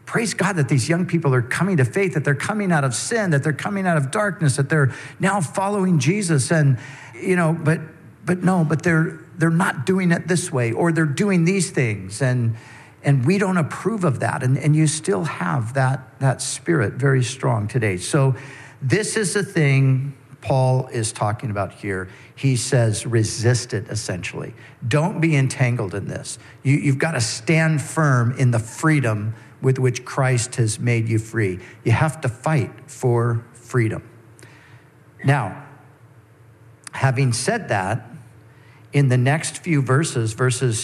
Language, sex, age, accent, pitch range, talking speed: English, male, 50-69, American, 120-155 Hz, 170 wpm